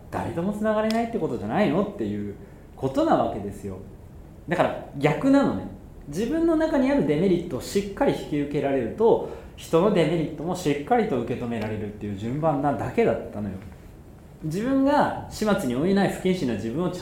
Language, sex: Japanese, male